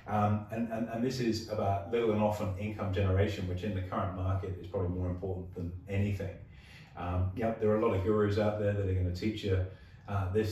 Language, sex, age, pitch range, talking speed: English, male, 30-49, 90-105 Hz, 230 wpm